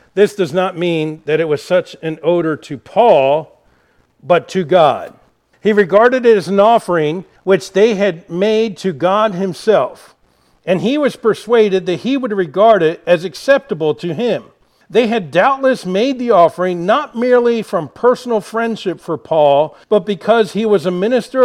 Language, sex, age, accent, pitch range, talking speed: English, male, 50-69, American, 155-215 Hz, 170 wpm